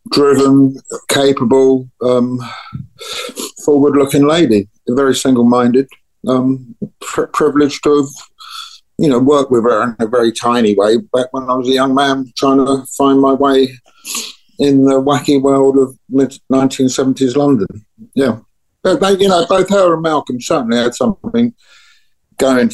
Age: 50-69